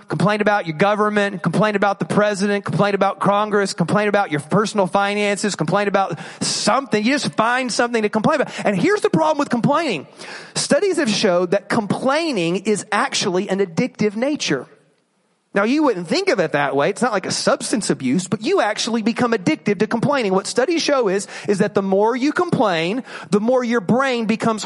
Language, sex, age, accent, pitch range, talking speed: English, male, 30-49, American, 185-255 Hz, 190 wpm